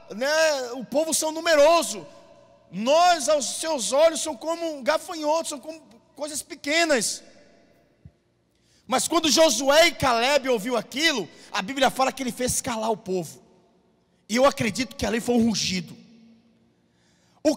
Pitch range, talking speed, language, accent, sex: 205-310 Hz, 145 wpm, Portuguese, Brazilian, male